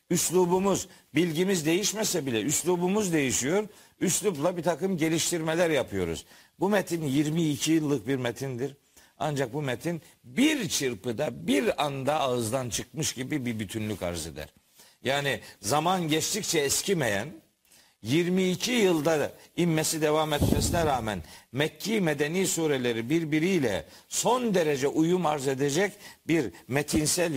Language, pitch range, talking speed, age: Turkish, 135-180 Hz, 115 wpm, 50-69